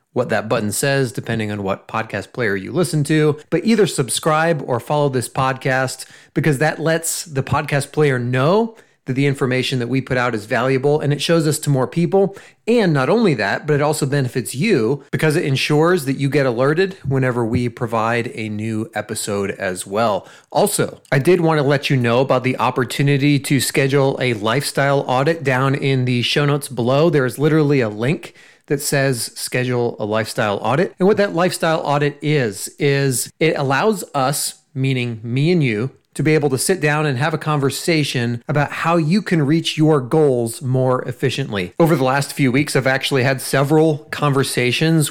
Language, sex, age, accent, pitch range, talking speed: English, male, 30-49, American, 130-155 Hz, 190 wpm